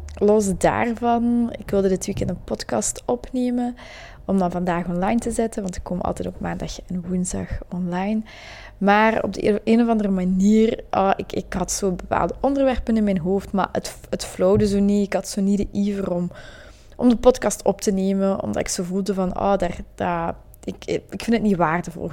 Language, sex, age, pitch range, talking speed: Dutch, female, 20-39, 185-215 Hz, 190 wpm